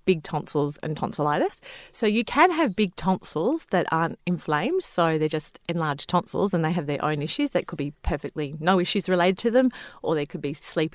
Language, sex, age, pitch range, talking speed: English, female, 30-49, 155-220 Hz, 210 wpm